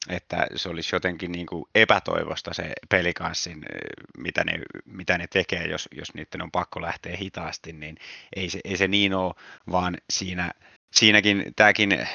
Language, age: Finnish, 30-49